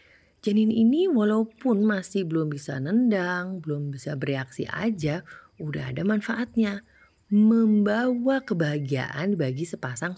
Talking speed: 105 wpm